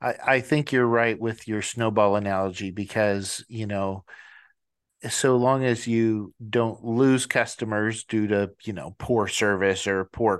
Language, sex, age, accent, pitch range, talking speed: English, male, 40-59, American, 100-125 Hz, 150 wpm